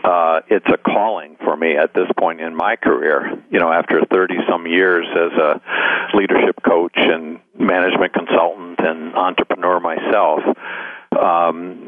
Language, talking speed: English, 145 wpm